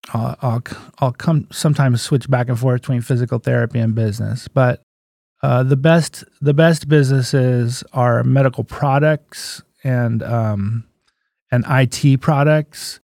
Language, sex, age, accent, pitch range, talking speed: English, male, 30-49, American, 115-145 Hz, 135 wpm